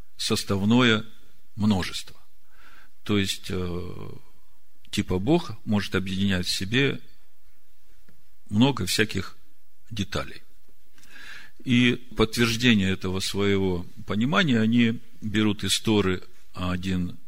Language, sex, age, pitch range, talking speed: Russian, male, 50-69, 95-120 Hz, 85 wpm